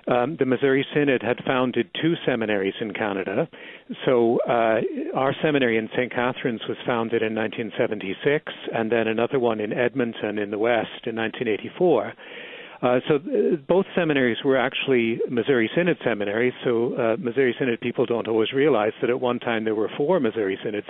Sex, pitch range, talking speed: male, 110-130 Hz, 165 wpm